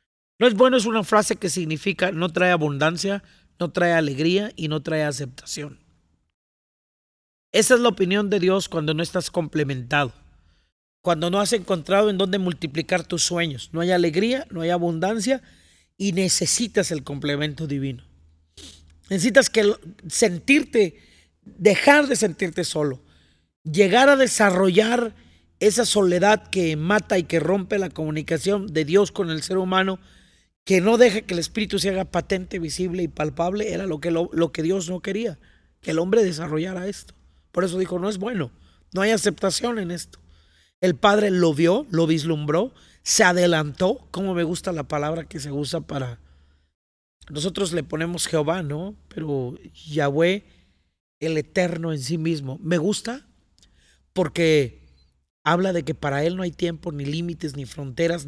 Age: 40-59